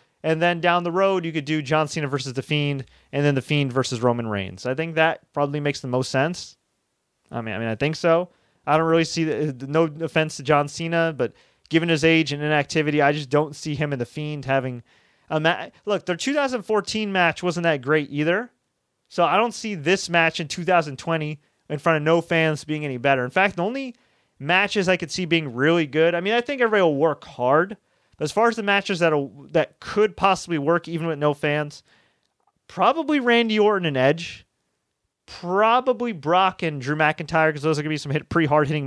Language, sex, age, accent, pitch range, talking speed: English, male, 30-49, American, 140-175 Hz, 210 wpm